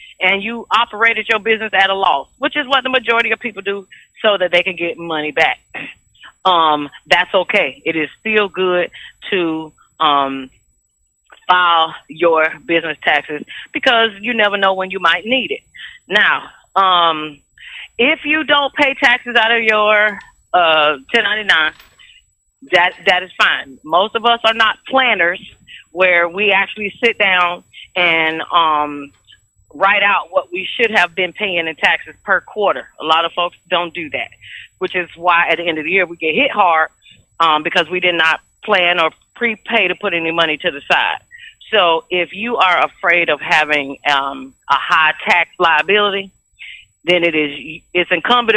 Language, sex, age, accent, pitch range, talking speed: English, female, 30-49, American, 160-215 Hz, 170 wpm